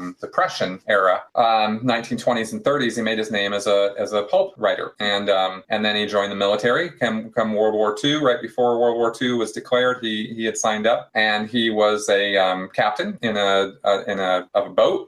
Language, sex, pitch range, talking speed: English, male, 105-120 Hz, 225 wpm